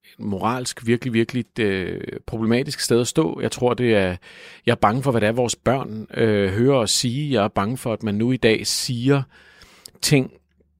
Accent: native